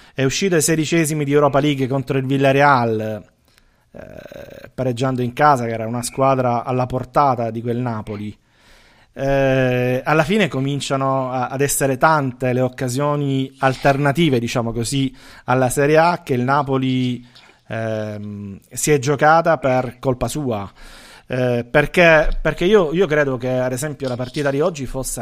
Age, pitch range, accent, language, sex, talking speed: 30-49, 120-145 Hz, native, Italian, male, 150 wpm